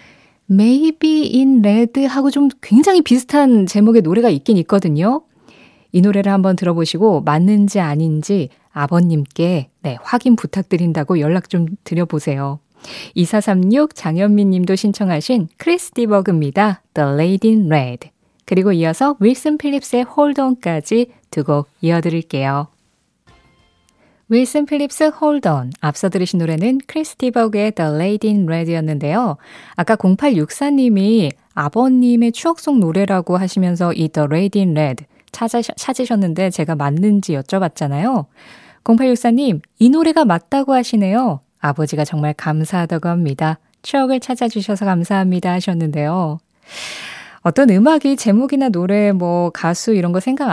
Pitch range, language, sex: 165-240 Hz, Korean, female